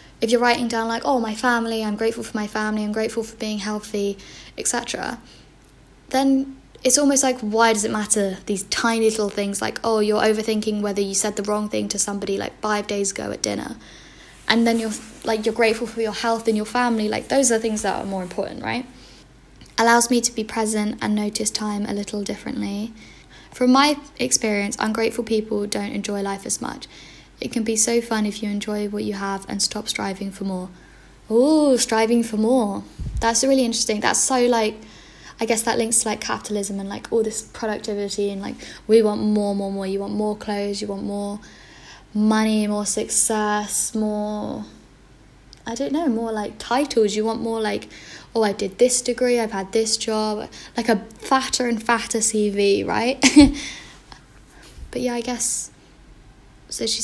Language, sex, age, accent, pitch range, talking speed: English, female, 10-29, British, 210-235 Hz, 190 wpm